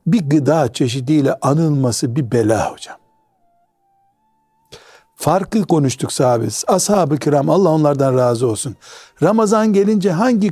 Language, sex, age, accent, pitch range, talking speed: Turkish, male, 60-79, native, 135-175 Hz, 110 wpm